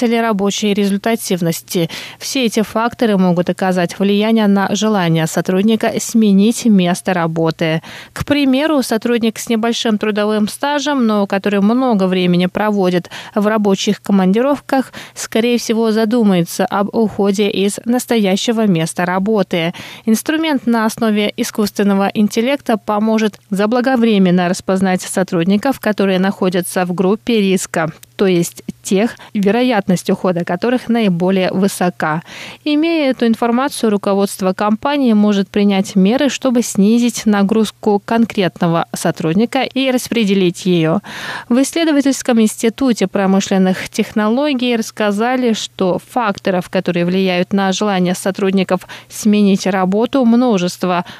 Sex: female